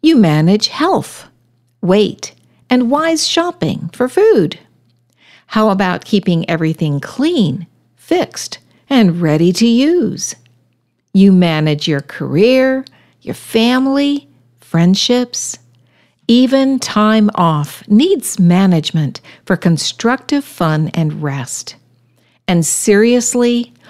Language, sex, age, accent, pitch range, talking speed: English, female, 60-79, American, 140-230 Hz, 95 wpm